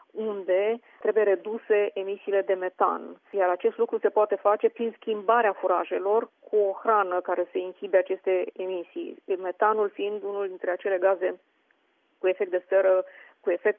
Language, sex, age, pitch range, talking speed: Romanian, female, 30-49, 190-215 Hz, 150 wpm